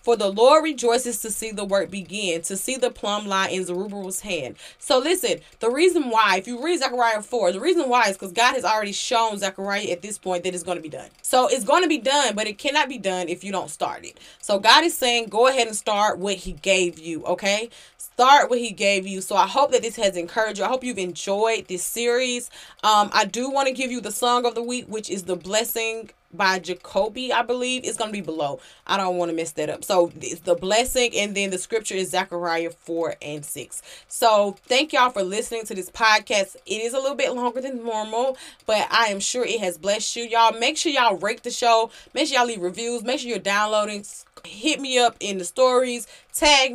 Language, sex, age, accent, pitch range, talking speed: English, female, 20-39, American, 190-245 Hz, 235 wpm